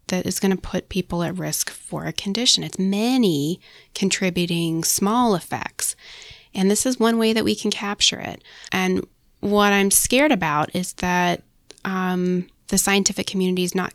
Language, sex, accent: English, female, American